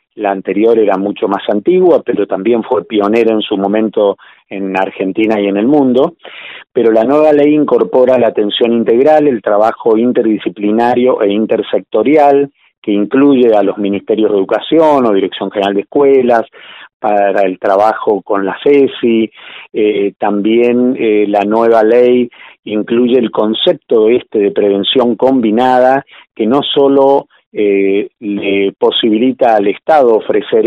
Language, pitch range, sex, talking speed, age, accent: Spanish, 105-135 Hz, male, 140 wpm, 40-59, Argentinian